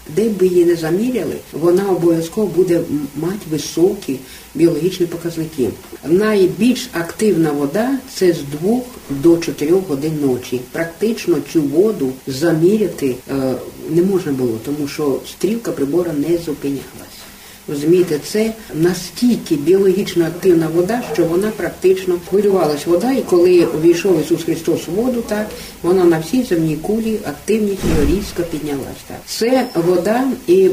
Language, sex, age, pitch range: Ukrainian, female, 50-69, 150-210 Hz